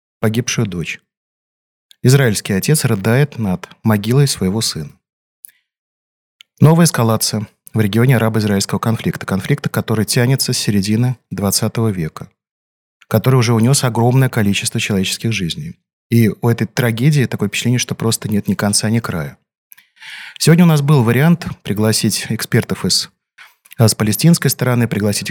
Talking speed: 130 wpm